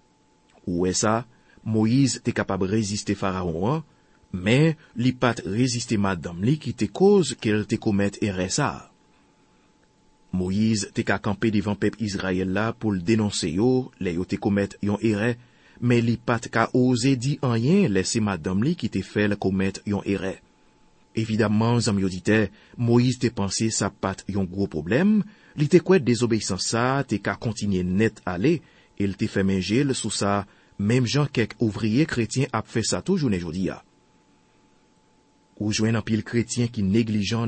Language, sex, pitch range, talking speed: French, male, 100-120 Hz, 155 wpm